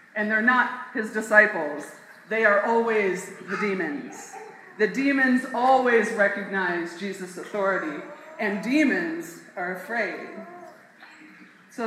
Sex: female